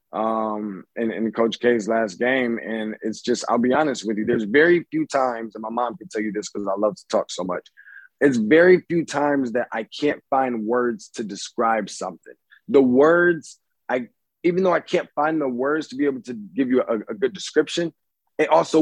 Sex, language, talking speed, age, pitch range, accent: male, English, 210 wpm, 20-39, 125-160 Hz, American